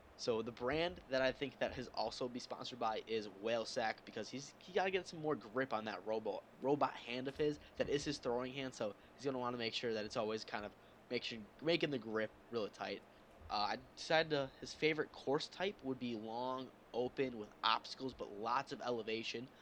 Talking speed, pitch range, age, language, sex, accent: 225 wpm, 105-140 Hz, 10-29, English, male, American